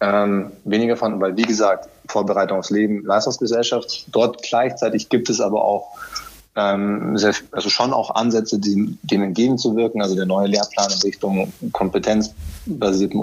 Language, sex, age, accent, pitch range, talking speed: German, male, 20-39, German, 95-110 Hz, 130 wpm